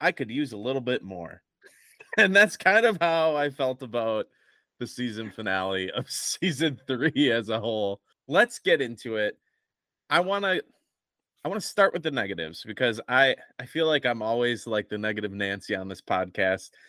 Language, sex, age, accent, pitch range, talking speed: English, male, 20-39, American, 105-140 Hz, 185 wpm